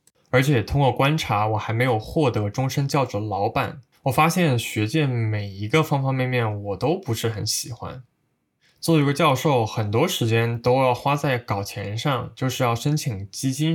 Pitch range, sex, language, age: 110-145 Hz, male, Chinese, 20-39